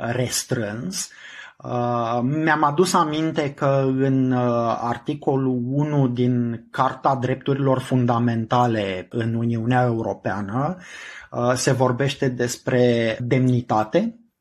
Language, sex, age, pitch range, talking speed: Romanian, male, 20-39, 120-145 Hz, 80 wpm